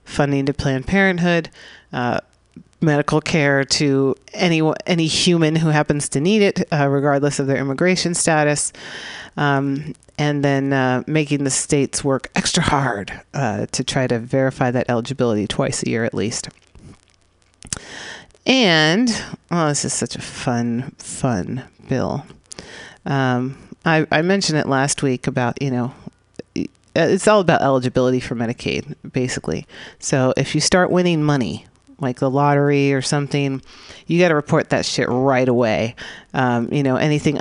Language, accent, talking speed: English, American, 150 wpm